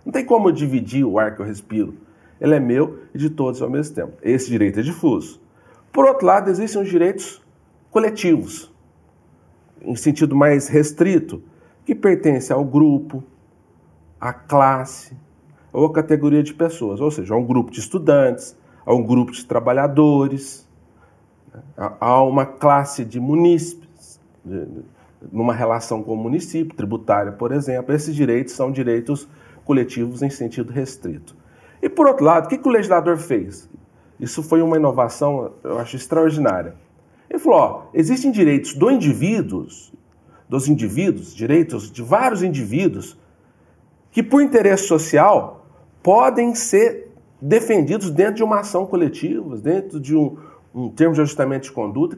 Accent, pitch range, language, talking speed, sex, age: Brazilian, 120-175 Hz, Portuguese, 145 wpm, male, 40-59